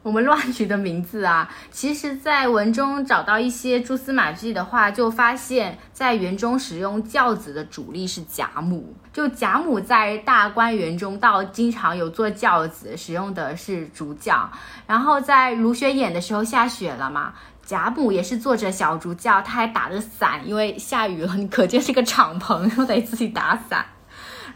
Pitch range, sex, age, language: 195-250 Hz, female, 20-39, Chinese